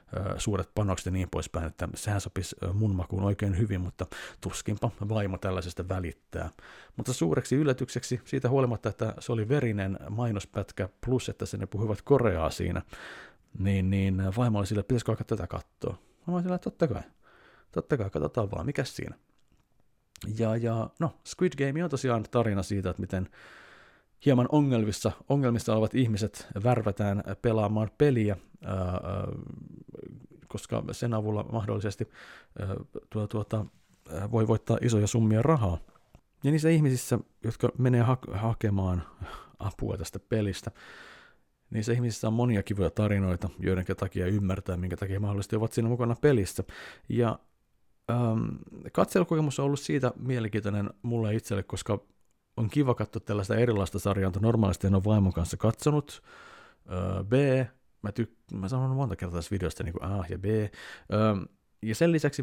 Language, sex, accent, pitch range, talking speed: Finnish, male, native, 95-120 Hz, 140 wpm